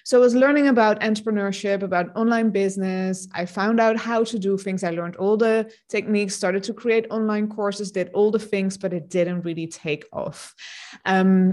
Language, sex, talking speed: English, female, 195 wpm